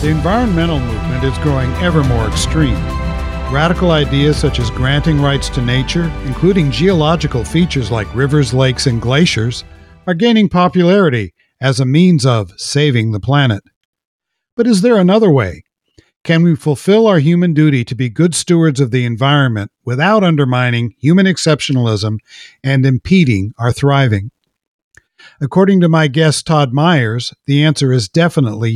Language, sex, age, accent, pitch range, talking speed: English, male, 50-69, American, 125-170 Hz, 145 wpm